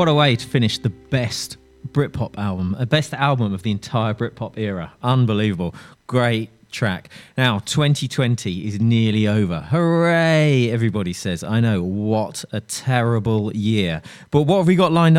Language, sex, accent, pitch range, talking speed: English, male, British, 110-140 Hz, 160 wpm